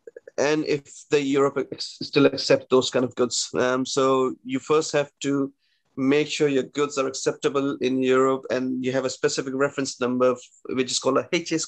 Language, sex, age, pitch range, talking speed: English, male, 30-49, 125-145 Hz, 195 wpm